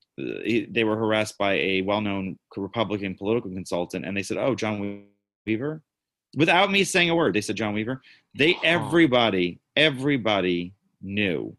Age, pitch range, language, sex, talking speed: 30-49, 95-125 Hz, English, male, 145 wpm